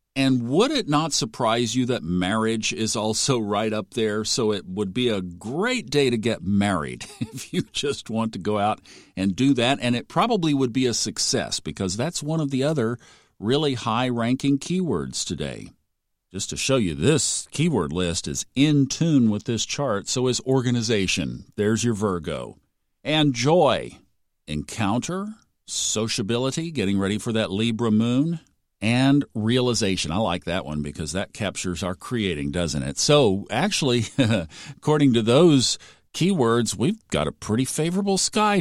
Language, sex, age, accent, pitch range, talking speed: English, male, 50-69, American, 100-135 Hz, 160 wpm